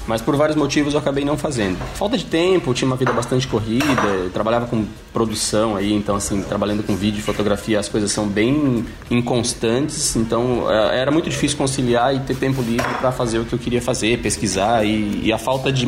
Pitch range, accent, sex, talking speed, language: 110-135 Hz, Brazilian, male, 210 wpm, Portuguese